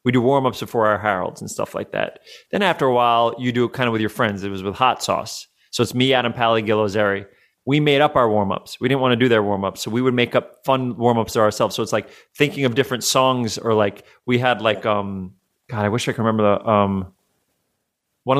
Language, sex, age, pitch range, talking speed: English, male, 30-49, 120-180 Hz, 250 wpm